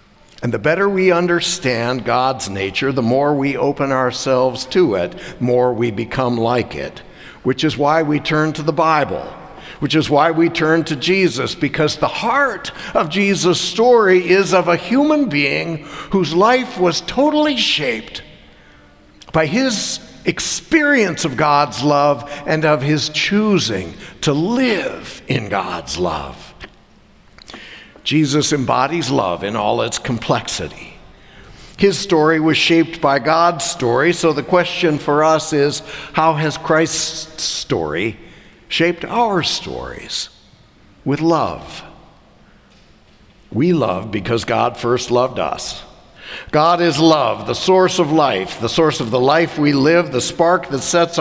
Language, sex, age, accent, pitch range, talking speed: English, male, 60-79, American, 140-175 Hz, 140 wpm